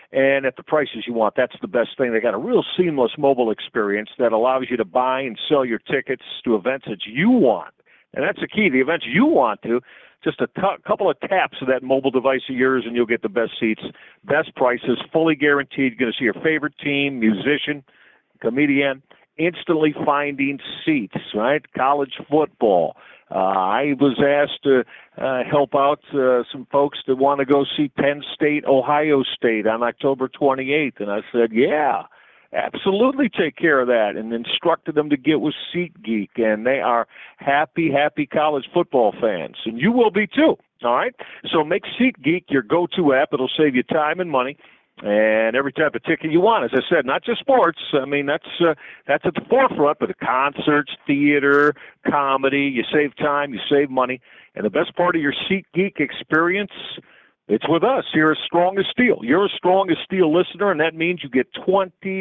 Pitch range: 130-165 Hz